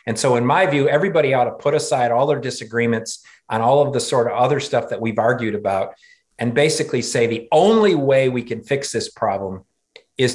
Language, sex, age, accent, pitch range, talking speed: English, male, 50-69, American, 115-150 Hz, 215 wpm